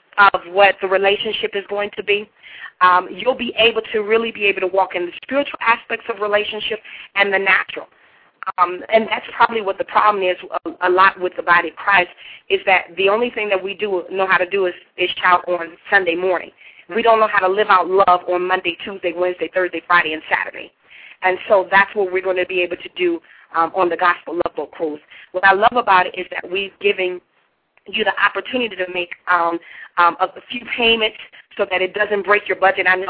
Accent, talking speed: American, 225 wpm